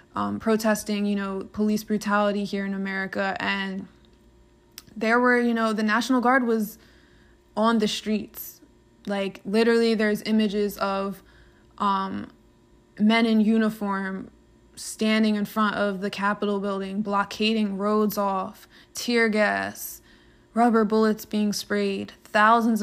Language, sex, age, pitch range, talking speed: English, female, 20-39, 195-220 Hz, 125 wpm